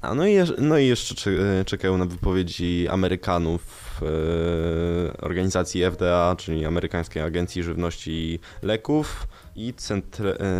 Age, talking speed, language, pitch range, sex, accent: 20-39, 115 wpm, Polish, 80-100 Hz, male, native